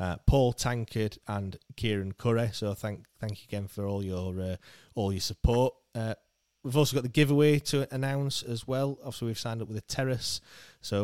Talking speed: 195 wpm